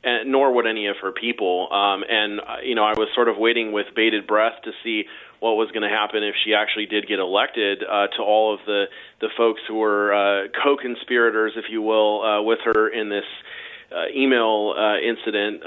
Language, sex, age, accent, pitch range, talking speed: English, male, 30-49, American, 105-125 Hz, 215 wpm